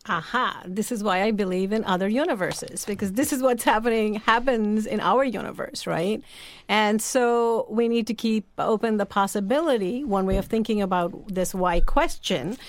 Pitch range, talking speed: 190-240 Hz, 170 wpm